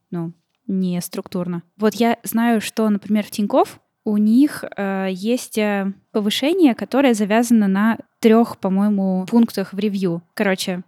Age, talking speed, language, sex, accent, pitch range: 10-29, 130 wpm, Russian, female, native, 185-225 Hz